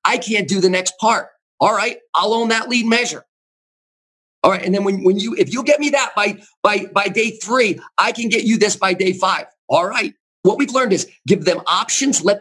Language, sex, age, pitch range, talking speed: English, male, 40-59, 160-215 Hz, 230 wpm